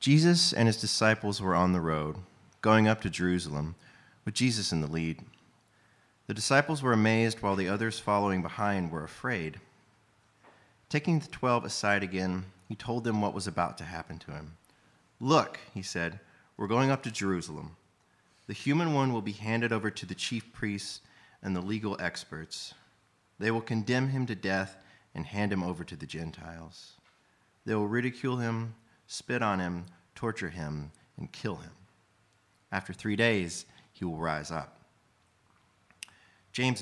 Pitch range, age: 90-115 Hz, 30-49